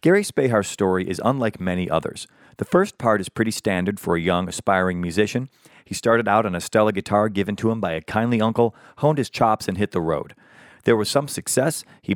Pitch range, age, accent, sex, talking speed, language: 100-130 Hz, 40-59, American, male, 215 wpm, English